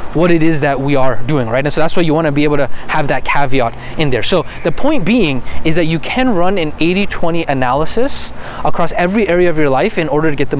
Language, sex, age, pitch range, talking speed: English, male, 20-39, 145-195 Hz, 255 wpm